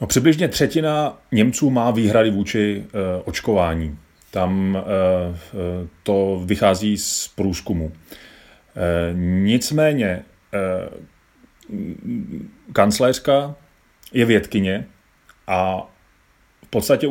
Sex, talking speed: male, 85 wpm